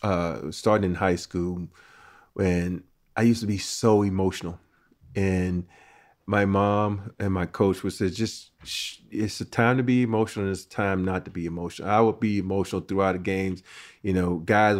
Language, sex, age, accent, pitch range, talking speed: English, male, 40-59, American, 95-110 Hz, 185 wpm